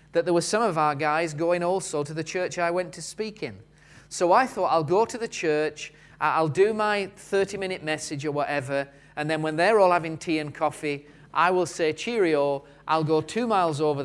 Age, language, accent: 30-49, English, British